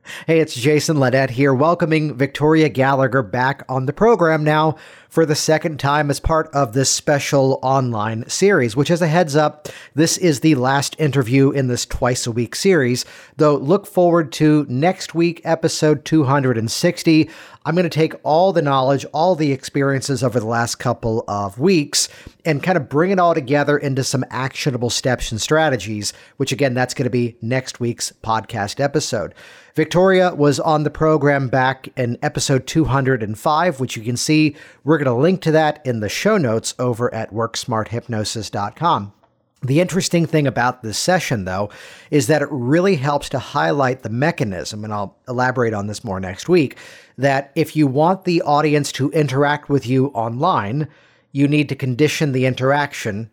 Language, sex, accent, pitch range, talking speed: English, male, American, 125-155 Hz, 175 wpm